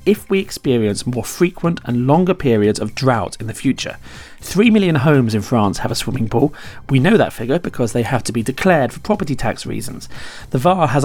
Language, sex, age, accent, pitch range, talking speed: English, male, 40-59, British, 115-155 Hz, 210 wpm